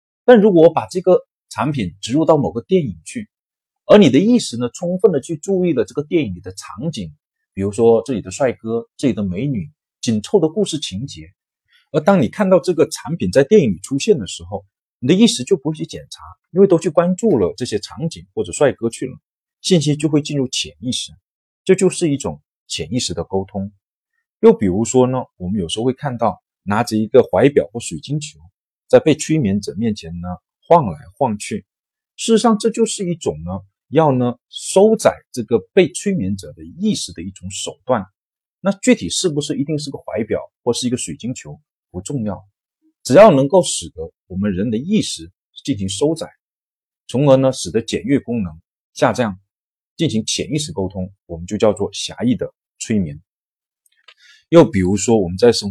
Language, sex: Chinese, male